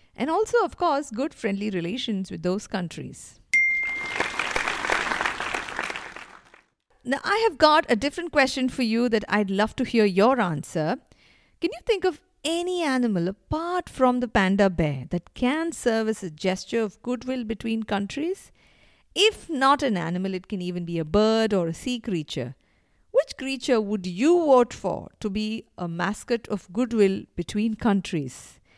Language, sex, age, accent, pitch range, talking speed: English, female, 50-69, Indian, 200-285 Hz, 155 wpm